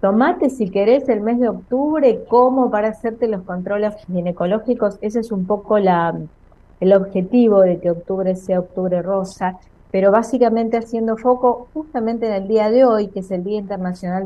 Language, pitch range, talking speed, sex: Italian, 175-230 Hz, 170 wpm, female